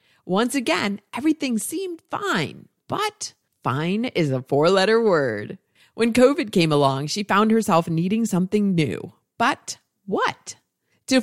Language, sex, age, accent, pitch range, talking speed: English, female, 30-49, American, 160-225 Hz, 130 wpm